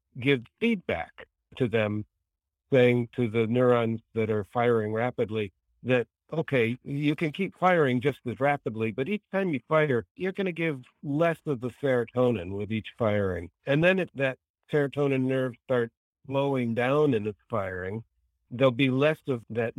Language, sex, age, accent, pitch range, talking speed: English, male, 60-79, American, 110-140 Hz, 165 wpm